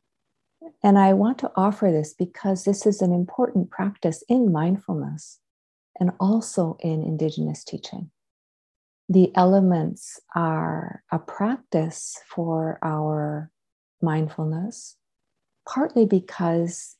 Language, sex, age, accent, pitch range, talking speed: English, female, 50-69, American, 160-200 Hz, 100 wpm